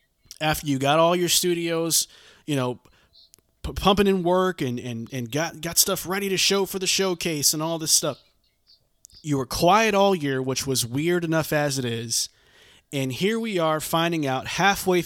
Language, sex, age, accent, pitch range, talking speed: English, male, 30-49, American, 130-175 Hz, 185 wpm